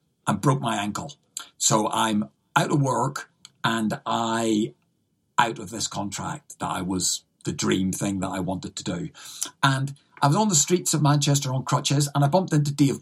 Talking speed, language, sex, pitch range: 190 wpm, English, male, 130-155 Hz